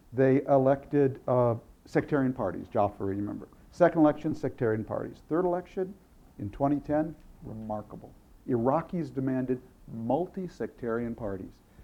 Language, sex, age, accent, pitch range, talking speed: English, male, 50-69, American, 115-155 Hz, 105 wpm